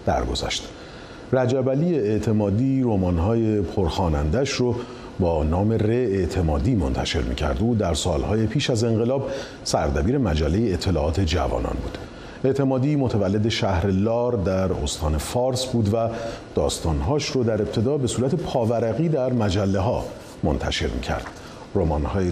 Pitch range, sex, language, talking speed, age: 85-120 Hz, male, Persian, 125 wpm, 40-59